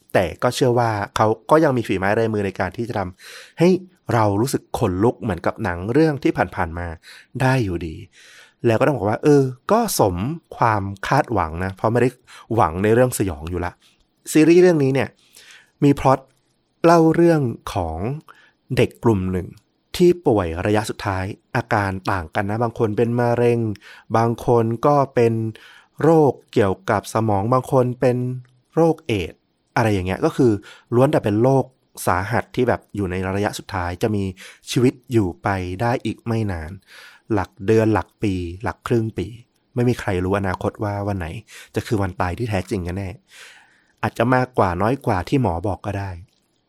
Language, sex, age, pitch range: Thai, male, 30-49, 100-125 Hz